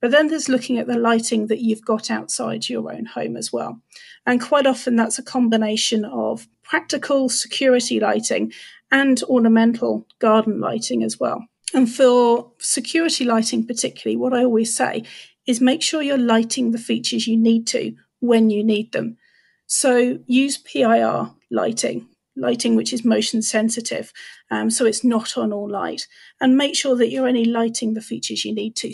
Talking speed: 170 wpm